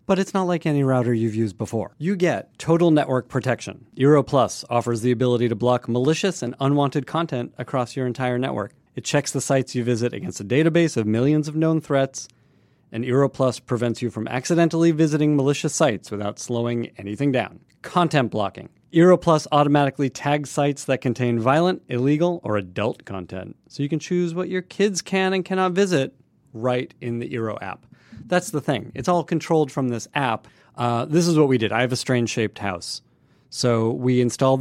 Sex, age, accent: male, 40-59, American